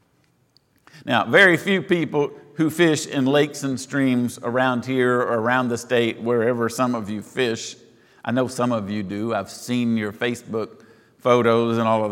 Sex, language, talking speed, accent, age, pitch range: male, English, 175 wpm, American, 50-69, 120-160 Hz